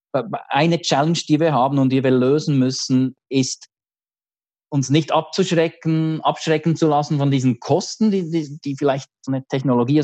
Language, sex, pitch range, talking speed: German, male, 130-150 Hz, 160 wpm